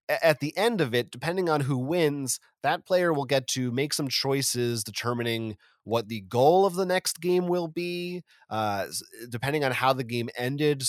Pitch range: 115-150 Hz